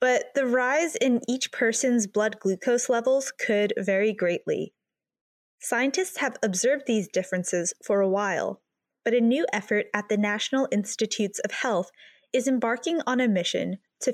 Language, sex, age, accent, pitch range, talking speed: English, female, 20-39, American, 210-265 Hz, 155 wpm